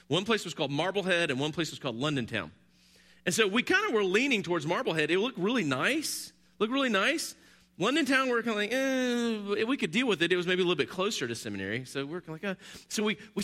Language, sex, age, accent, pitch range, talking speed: English, male, 40-59, American, 165-260 Hz, 275 wpm